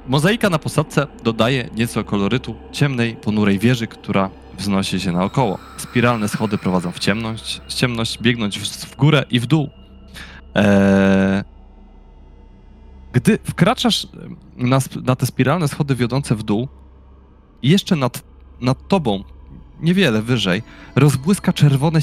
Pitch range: 100-155 Hz